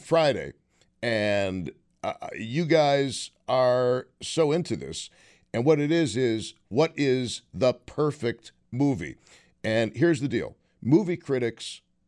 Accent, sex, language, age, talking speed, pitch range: American, male, English, 50-69, 125 wpm, 105-145 Hz